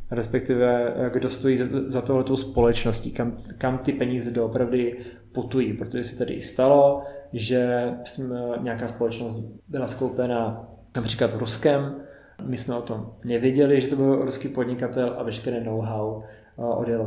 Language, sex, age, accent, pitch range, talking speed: Czech, male, 20-39, native, 120-135 Hz, 135 wpm